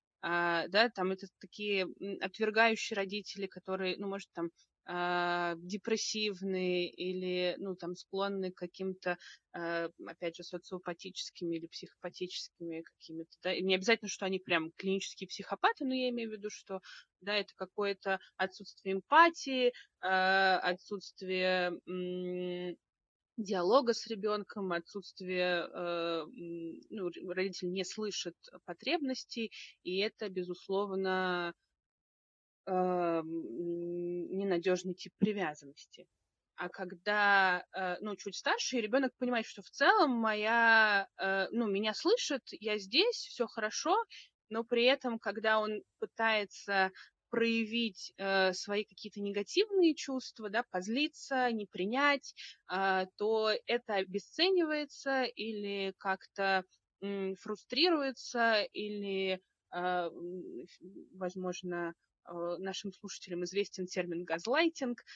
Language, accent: Russian, native